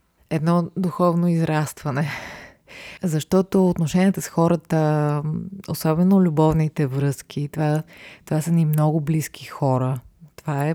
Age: 20-39